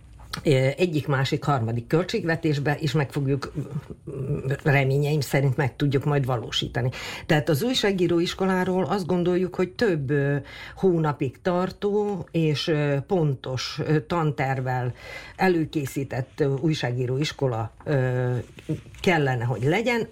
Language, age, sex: Hungarian, 50-69, female